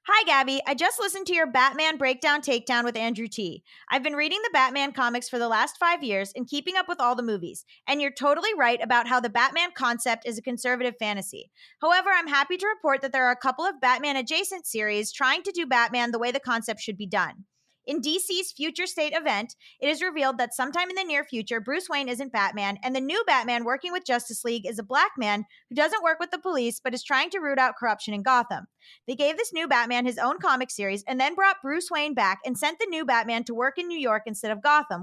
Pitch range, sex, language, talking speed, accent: 230-310 Hz, female, English, 245 wpm, American